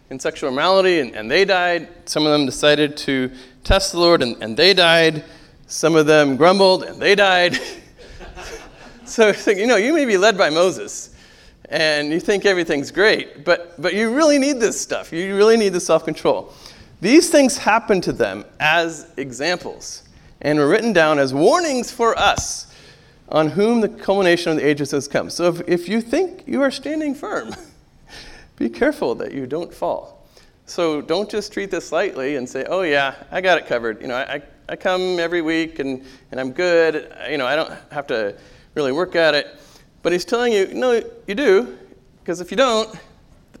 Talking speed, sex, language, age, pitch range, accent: 190 wpm, male, English, 40-59, 150-210 Hz, American